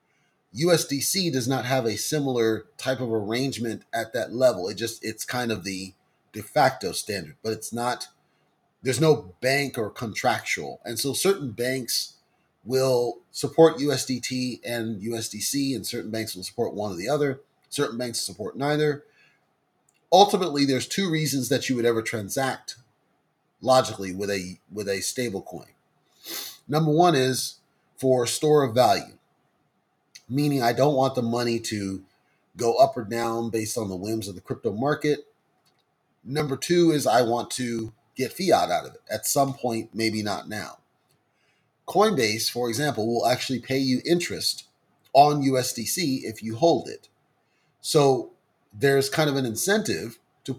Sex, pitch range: male, 115-140 Hz